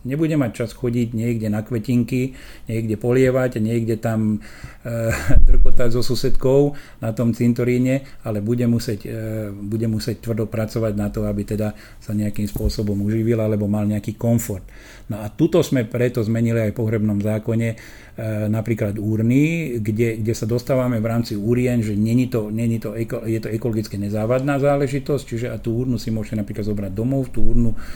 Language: Slovak